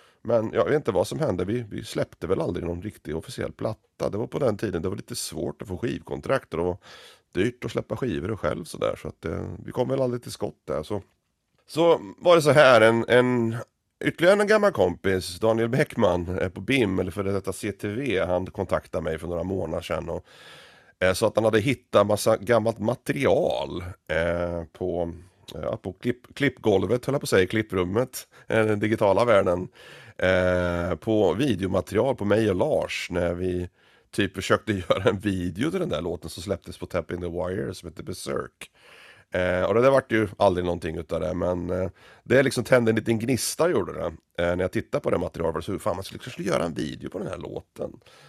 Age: 30-49